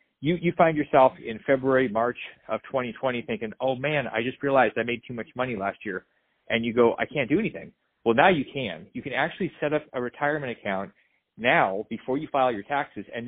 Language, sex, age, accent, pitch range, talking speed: English, male, 30-49, American, 115-145 Hz, 215 wpm